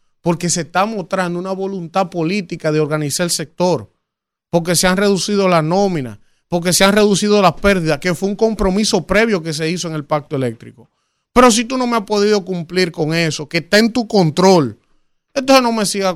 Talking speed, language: 200 wpm, Spanish